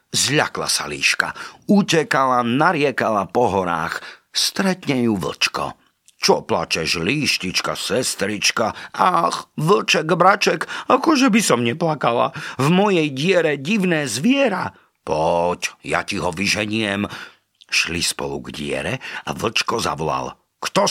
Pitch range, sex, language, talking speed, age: 125-180 Hz, male, Slovak, 110 wpm, 50-69